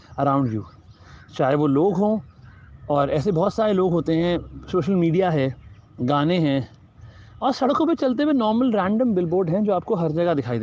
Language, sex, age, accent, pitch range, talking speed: Hindi, male, 30-49, native, 125-195 Hz, 180 wpm